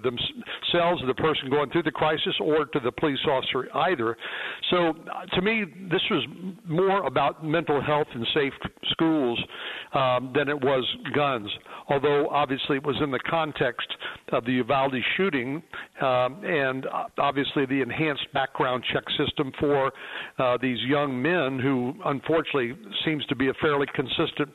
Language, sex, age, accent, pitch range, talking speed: English, male, 60-79, American, 130-155 Hz, 150 wpm